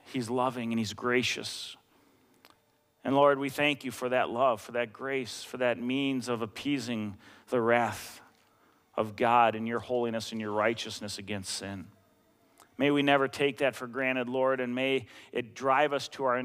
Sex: male